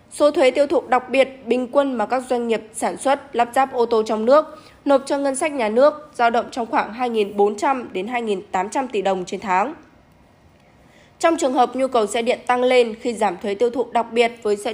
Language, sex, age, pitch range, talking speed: Vietnamese, female, 10-29, 220-275 Hz, 215 wpm